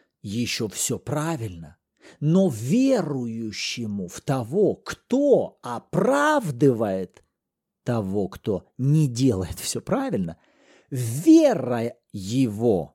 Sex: male